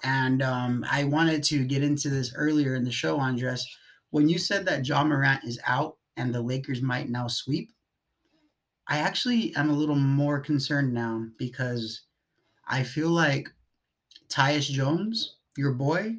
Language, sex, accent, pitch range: English, male, American, 130-155 Hz